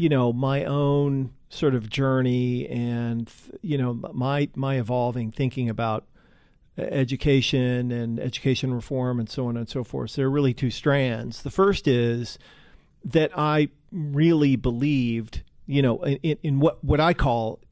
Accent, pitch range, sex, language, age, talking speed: American, 120-145 Hz, male, English, 40-59, 155 wpm